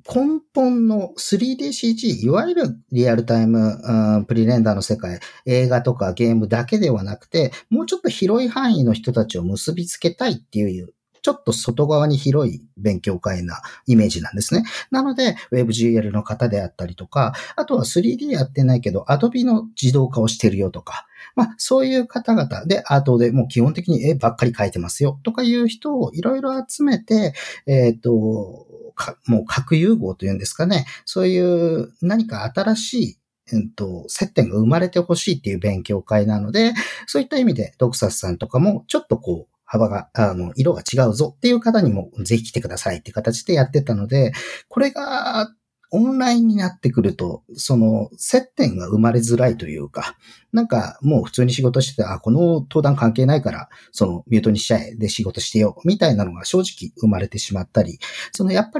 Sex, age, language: male, 40-59, Japanese